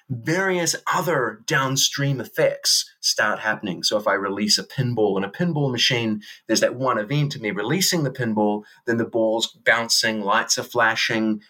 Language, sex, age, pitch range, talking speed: English, male, 30-49, 110-145 Hz, 165 wpm